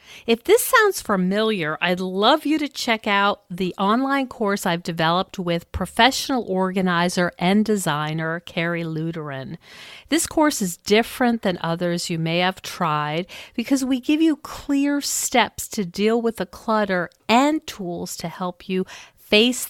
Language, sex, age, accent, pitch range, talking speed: English, female, 50-69, American, 170-240 Hz, 150 wpm